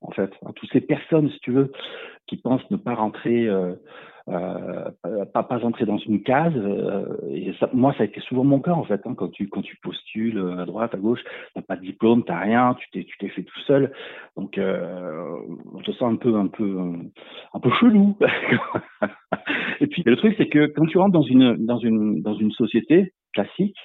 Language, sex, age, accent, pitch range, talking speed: French, male, 60-79, French, 105-140 Hz, 225 wpm